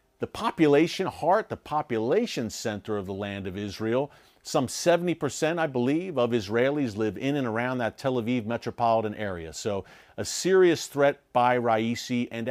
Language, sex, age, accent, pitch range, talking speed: English, male, 50-69, American, 110-140 Hz, 165 wpm